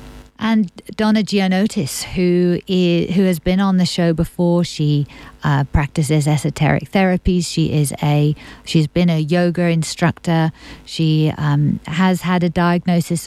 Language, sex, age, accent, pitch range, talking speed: English, female, 50-69, British, 160-195 Hz, 140 wpm